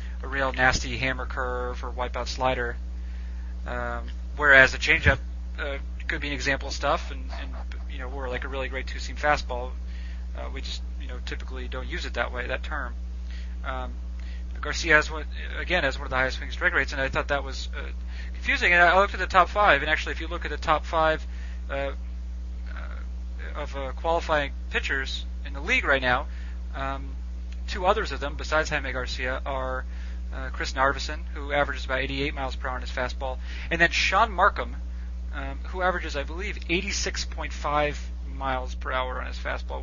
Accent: American